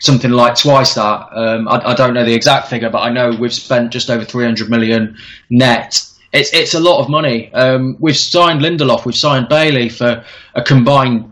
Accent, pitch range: British, 115-135 Hz